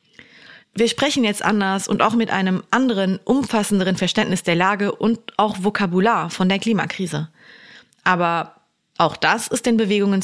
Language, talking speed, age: German, 145 wpm, 30-49